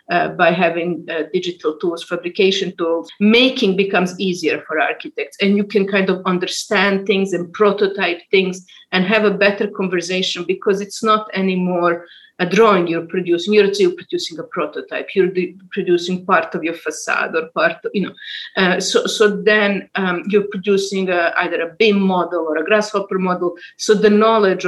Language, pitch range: English, 170-205 Hz